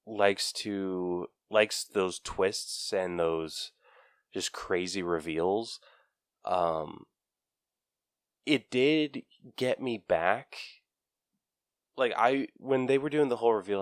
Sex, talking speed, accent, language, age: male, 110 wpm, American, English, 20-39